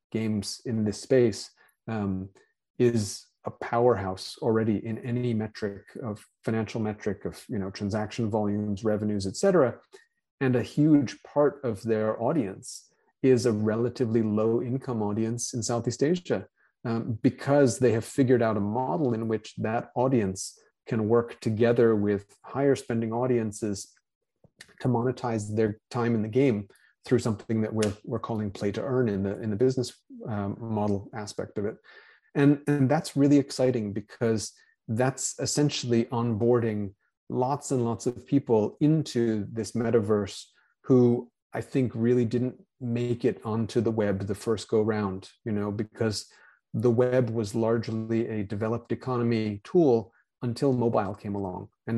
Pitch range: 105-125 Hz